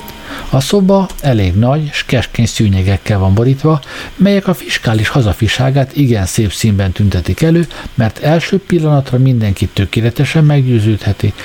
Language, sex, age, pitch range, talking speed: Hungarian, male, 60-79, 100-145 Hz, 125 wpm